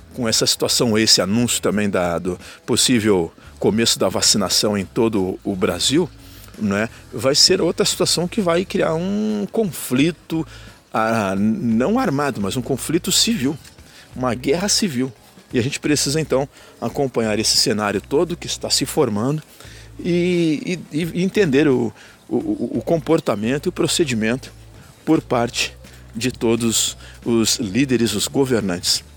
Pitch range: 110-150 Hz